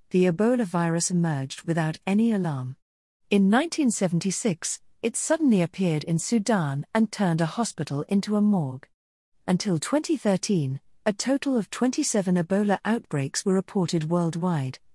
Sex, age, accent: female, 40-59, British